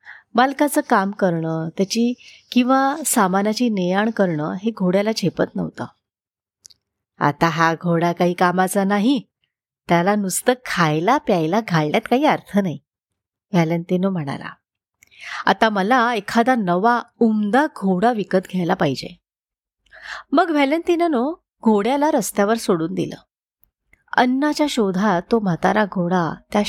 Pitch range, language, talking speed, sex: 180-245 Hz, Marathi, 110 wpm, female